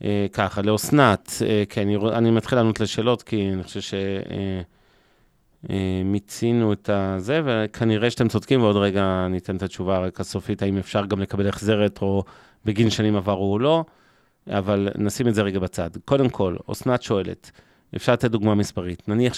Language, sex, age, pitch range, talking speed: Hebrew, male, 30-49, 100-125 Hz, 170 wpm